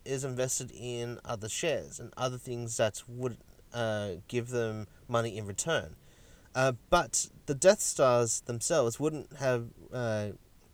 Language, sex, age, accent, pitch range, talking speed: English, male, 30-49, Australian, 105-130 Hz, 140 wpm